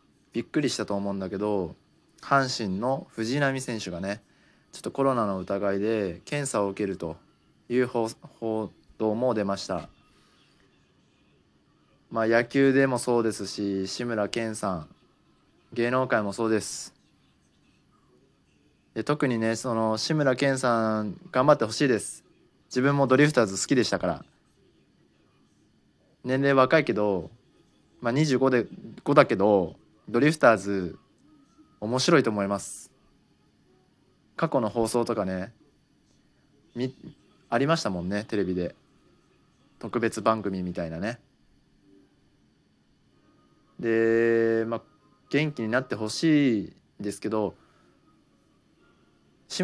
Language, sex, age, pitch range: Japanese, male, 20-39, 100-125 Hz